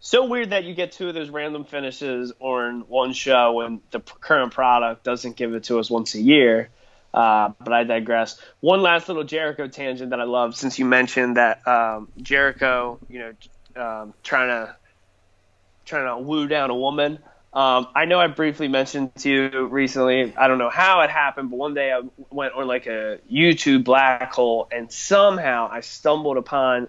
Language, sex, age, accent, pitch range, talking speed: English, male, 20-39, American, 120-140 Hz, 190 wpm